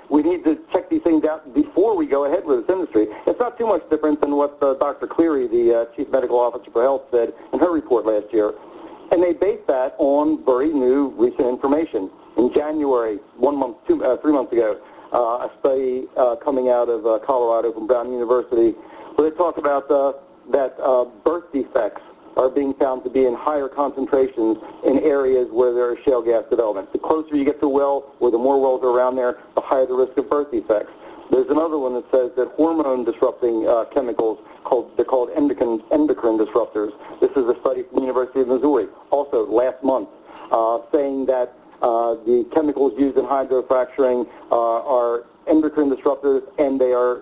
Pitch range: 125-160 Hz